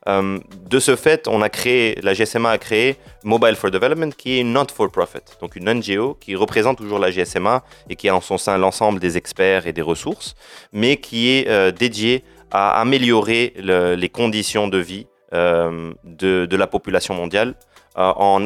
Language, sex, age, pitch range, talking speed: Arabic, male, 30-49, 95-115 Hz, 190 wpm